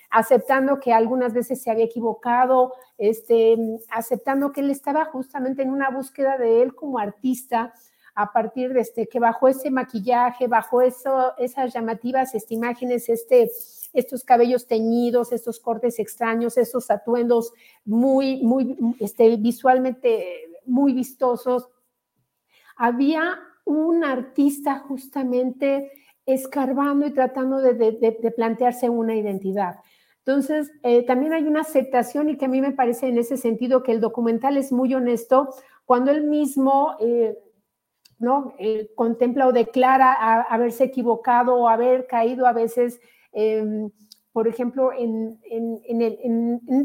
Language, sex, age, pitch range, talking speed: Spanish, female, 50-69, 230-265 Hz, 140 wpm